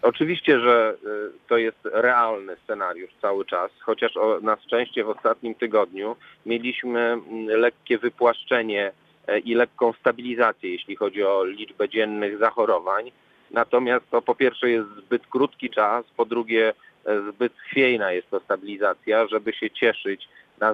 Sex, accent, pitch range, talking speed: male, native, 105-125 Hz, 130 wpm